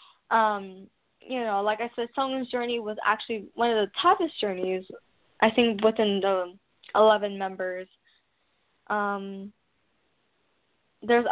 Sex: female